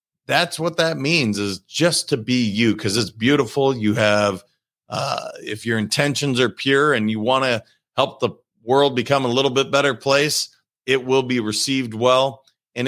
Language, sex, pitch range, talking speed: English, male, 110-145 Hz, 180 wpm